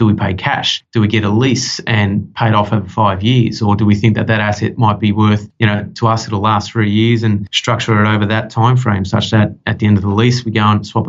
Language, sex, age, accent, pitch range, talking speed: English, male, 30-49, Australian, 105-115 Hz, 280 wpm